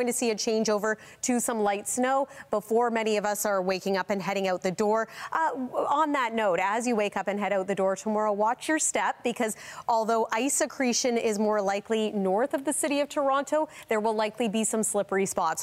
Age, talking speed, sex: 30-49, 225 wpm, female